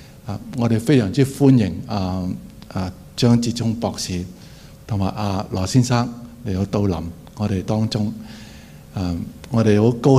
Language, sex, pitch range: Chinese, male, 100-120 Hz